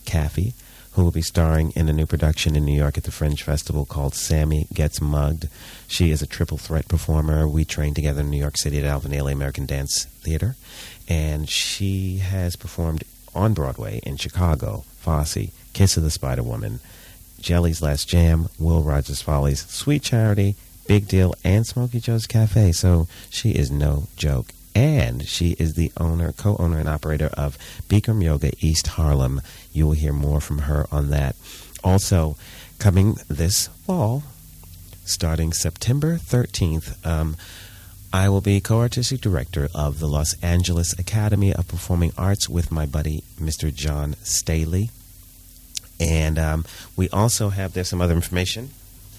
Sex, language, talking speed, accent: male, English, 155 wpm, American